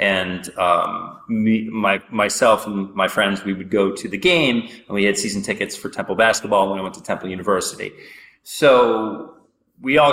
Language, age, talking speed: English, 30-49, 185 wpm